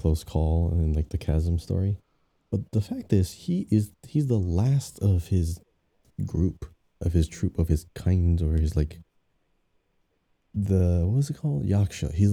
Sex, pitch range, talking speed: male, 80-100 Hz, 170 wpm